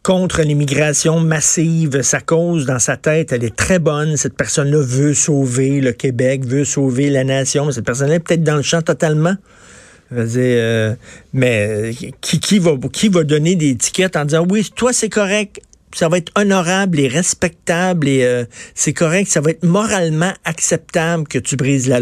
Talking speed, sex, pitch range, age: 185 wpm, male, 130-160 Hz, 50-69